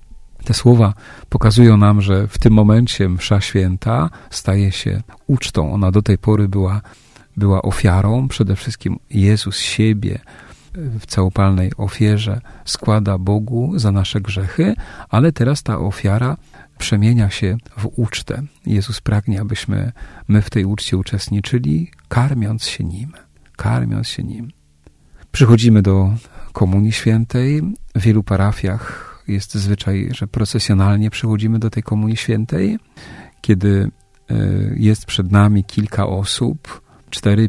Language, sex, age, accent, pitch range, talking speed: Polish, male, 40-59, native, 100-120 Hz, 125 wpm